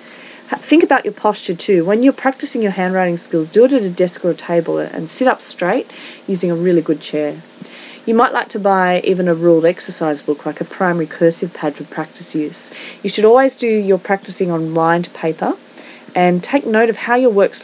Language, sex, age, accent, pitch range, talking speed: English, female, 30-49, Australian, 165-210 Hz, 210 wpm